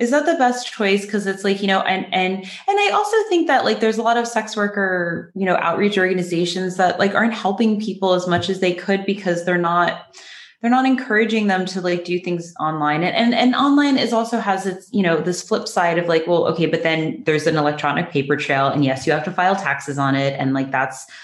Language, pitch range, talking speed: English, 135-195 Hz, 245 wpm